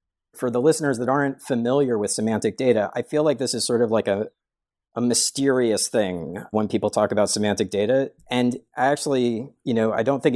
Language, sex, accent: English, male, American